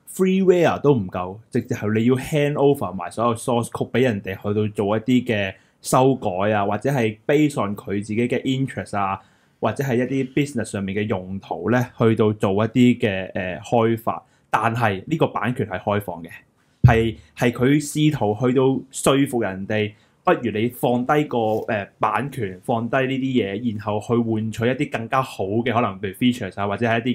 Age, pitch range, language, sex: 20-39, 105-135 Hz, Chinese, male